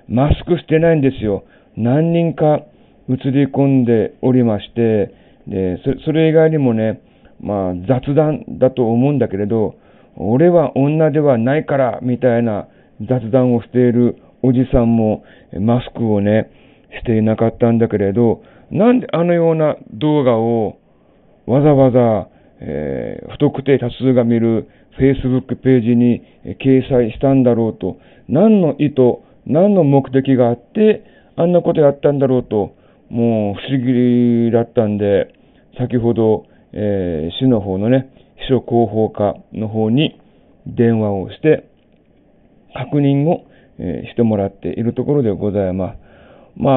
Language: Japanese